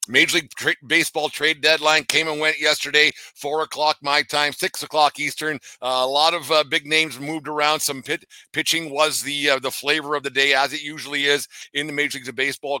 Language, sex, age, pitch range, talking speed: English, male, 50-69, 130-145 Hz, 220 wpm